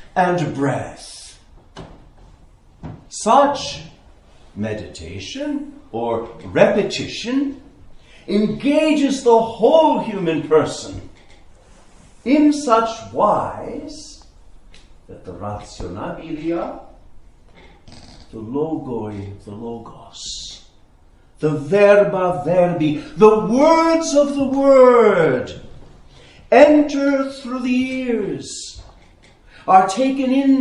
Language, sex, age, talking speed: English, male, 50-69, 70 wpm